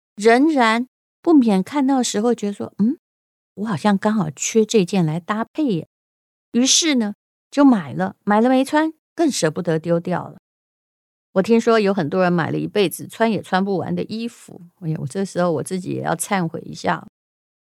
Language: Chinese